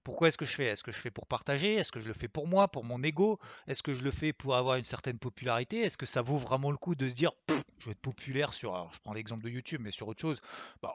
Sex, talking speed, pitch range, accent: male, 320 wpm, 125-150 Hz, French